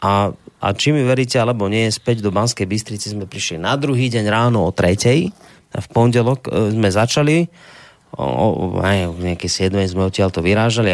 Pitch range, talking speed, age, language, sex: 115-145 Hz, 155 wpm, 30-49, Slovak, male